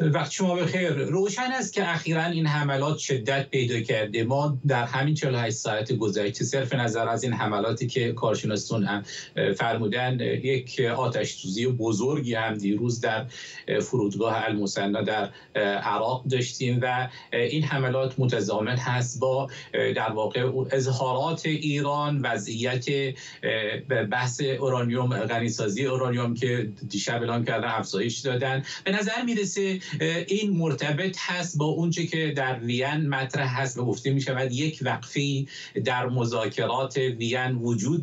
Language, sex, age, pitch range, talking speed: Persian, male, 50-69, 125-150 Hz, 135 wpm